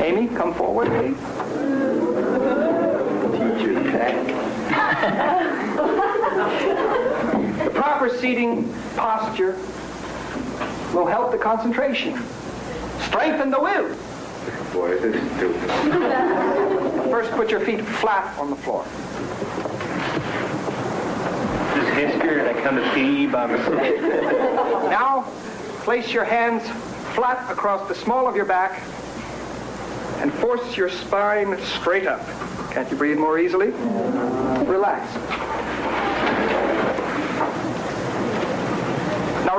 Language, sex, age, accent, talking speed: English, male, 60-79, American, 90 wpm